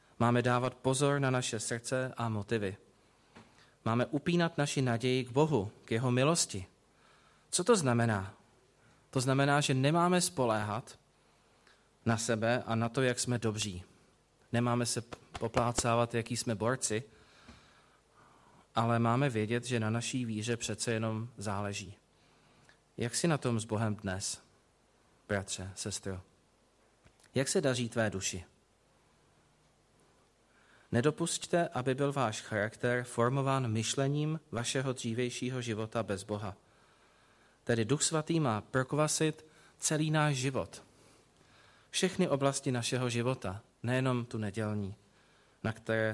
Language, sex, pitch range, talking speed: Czech, male, 110-135 Hz, 120 wpm